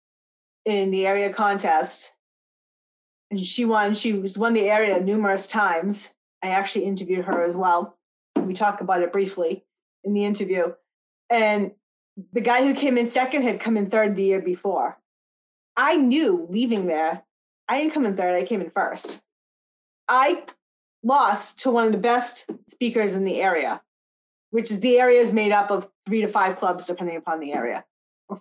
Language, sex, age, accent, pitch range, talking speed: English, female, 40-59, American, 190-245 Hz, 175 wpm